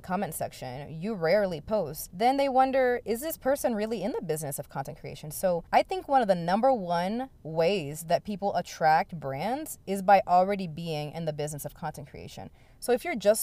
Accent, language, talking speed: American, English, 200 wpm